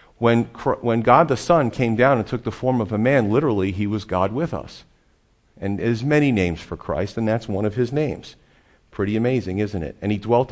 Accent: American